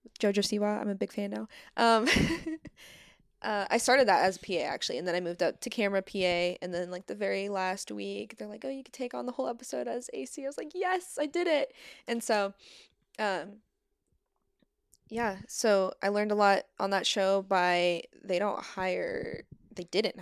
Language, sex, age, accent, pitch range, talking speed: English, female, 20-39, American, 185-230 Hz, 200 wpm